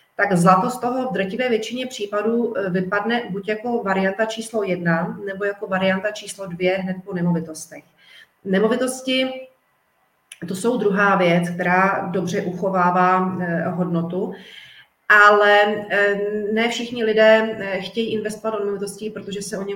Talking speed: 130 wpm